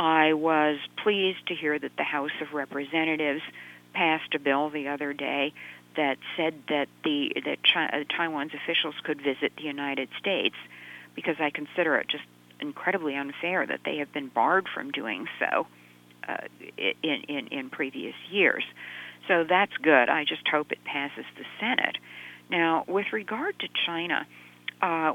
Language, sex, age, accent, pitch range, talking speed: English, female, 50-69, American, 120-160 Hz, 155 wpm